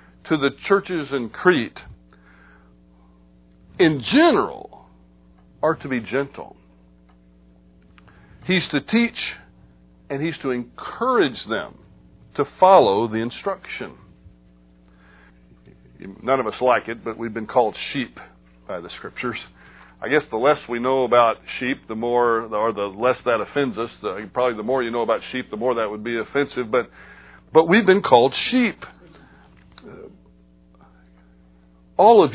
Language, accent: English, American